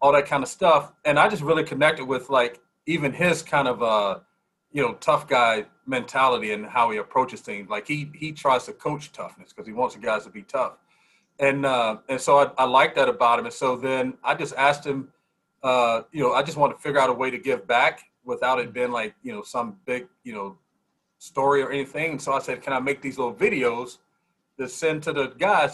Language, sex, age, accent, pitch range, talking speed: English, male, 40-59, American, 125-155 Hz, 235 wpm